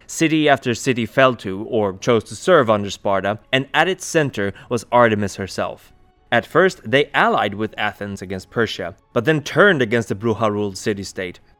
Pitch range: 105-135 Hz